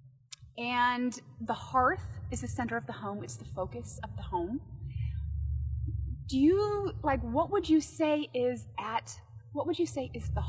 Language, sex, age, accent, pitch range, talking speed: English, female, 30-49, American, 190-315 Hz, 170 wpm